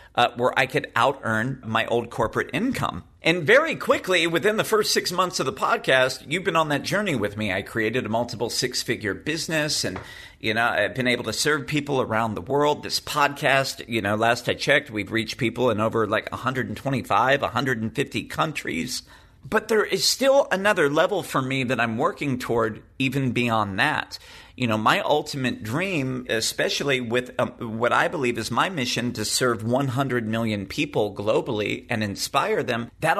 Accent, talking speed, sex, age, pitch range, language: American, 185 wpm, male, 50-69, 115-145 Hz, English